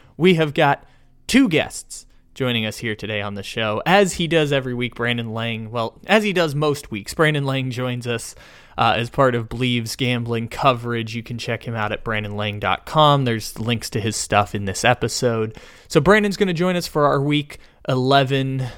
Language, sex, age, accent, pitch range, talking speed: English, male, 20-39, American, 110-145 Hz, 195 wpm